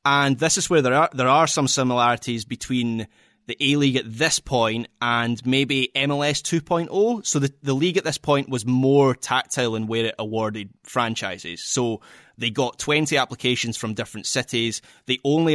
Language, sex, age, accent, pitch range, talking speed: English, male, 20-39, British, 115-140 Hz, 175 wpm